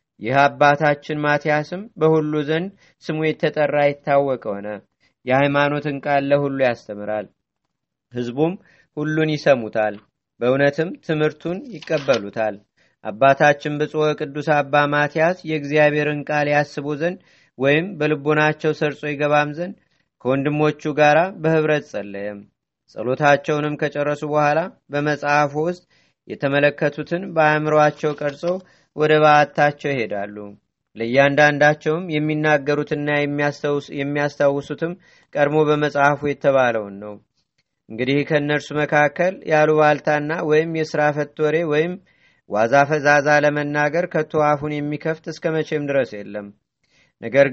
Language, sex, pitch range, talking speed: Amharic, male, 140-155 Hz, 90 wpm